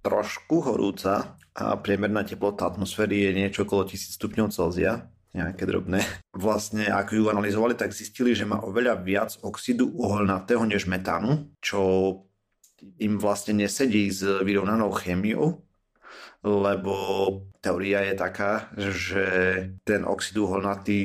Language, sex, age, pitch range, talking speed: Slovak, male, 30-49, 95-105 Hz, 115 wpm